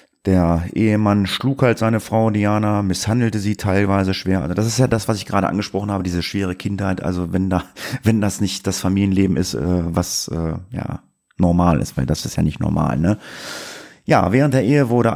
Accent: German